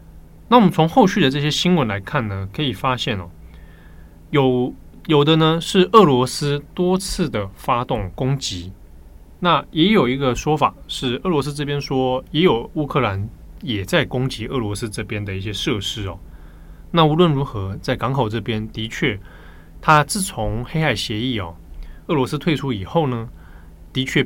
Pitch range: 95-145 Hz